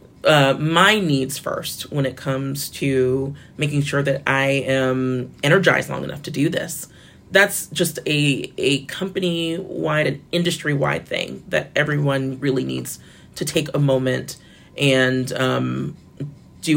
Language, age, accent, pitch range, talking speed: English, 30-49, American, 135-160 Hz, 135 wpm